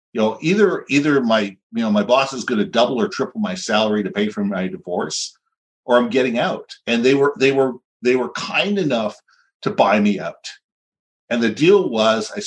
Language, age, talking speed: English, 50-69, 210 wpm